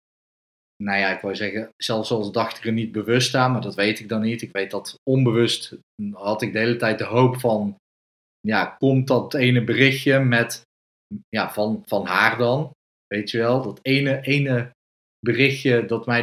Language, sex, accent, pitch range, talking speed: Dutch, male, Dutch, 105-130 Hz, 190 wpm